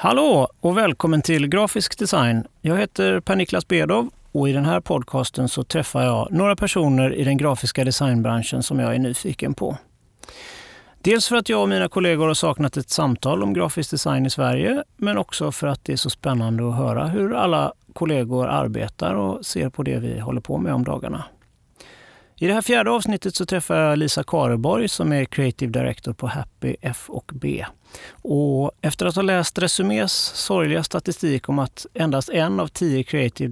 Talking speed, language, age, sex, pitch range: 185 wpm, Swedish, 30-49, male, 125-175 Hz